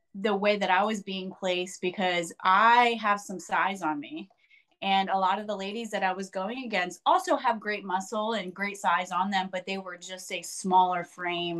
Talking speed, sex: 210 wpm, female